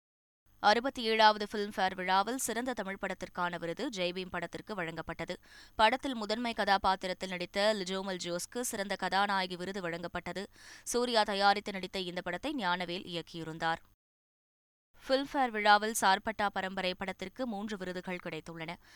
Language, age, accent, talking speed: Tamil, 20-39, native, 115 wpm